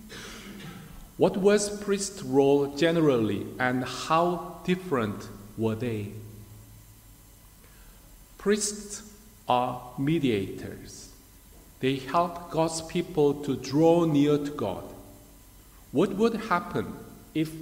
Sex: male